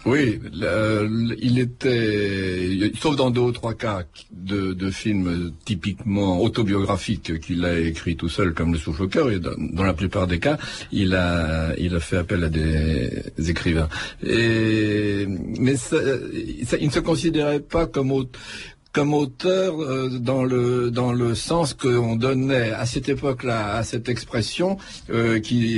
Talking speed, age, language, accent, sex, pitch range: 165 wpm, 60-79, French, French, male, 105-135 Hz